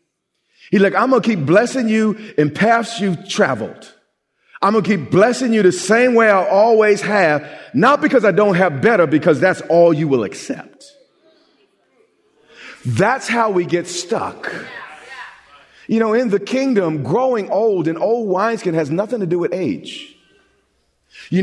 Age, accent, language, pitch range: 40-59, American, English, 180-235 Hz